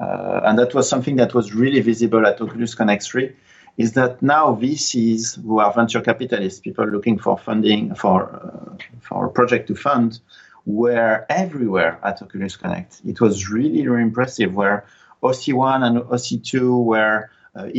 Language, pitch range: English, 110-125 Hz